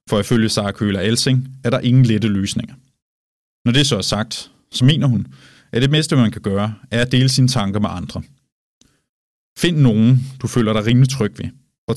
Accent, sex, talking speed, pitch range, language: native, male, 200 wpm, 105-130 Hz, Danish